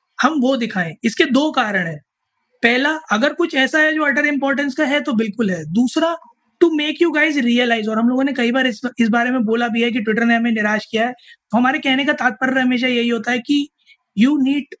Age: 20-39